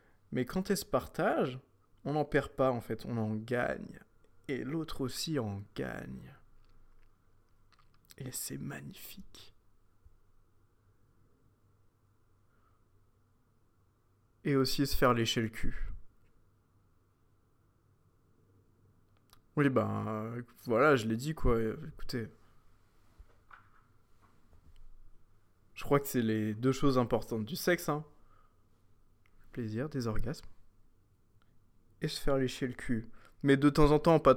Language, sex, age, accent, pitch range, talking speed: French, male, 20-39, French, 100-130 Hz, 110 wpm